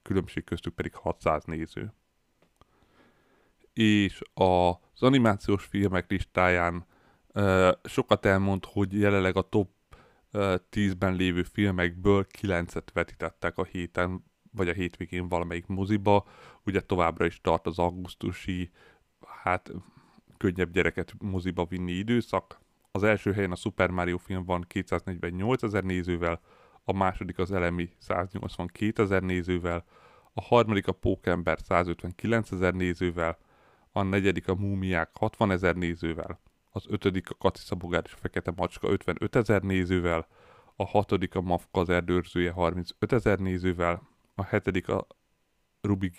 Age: 30-49